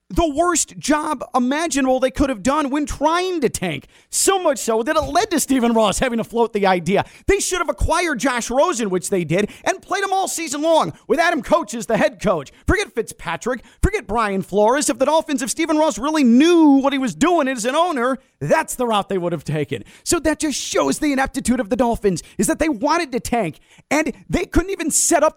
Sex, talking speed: male, 225 wpm